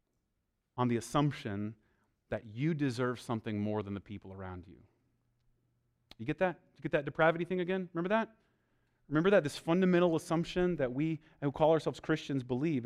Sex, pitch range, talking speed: male, 125-195 Hz, 170 wpm